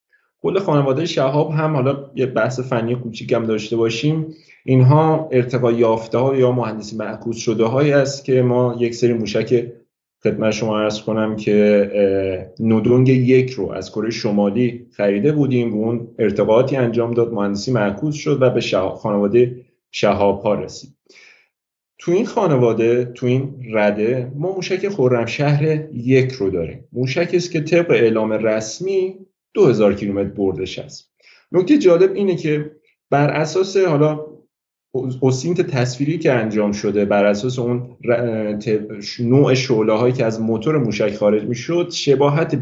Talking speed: 140 wpm